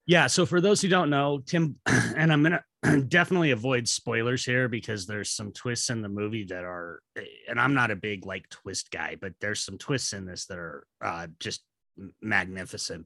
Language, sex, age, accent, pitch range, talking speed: English, male, 30-49, American, 105-130 Hz, 200 wpm